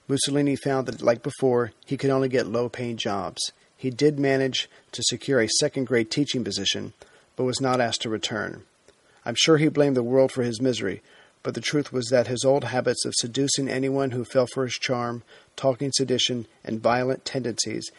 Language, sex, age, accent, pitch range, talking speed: English, male, 40-59, American, 120-135 Hz, 185 wpm